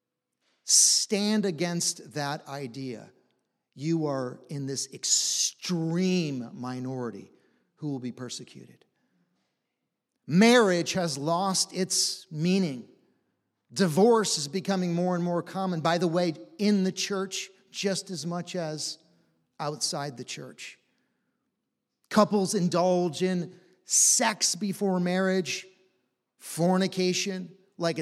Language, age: English, 40-59